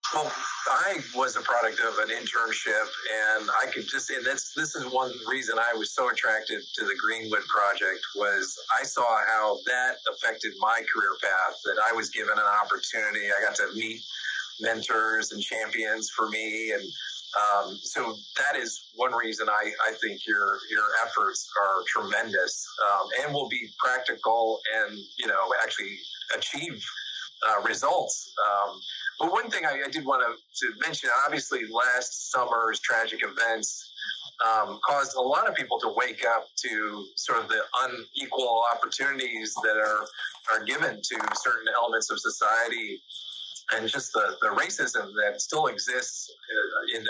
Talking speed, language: 155 wpm, English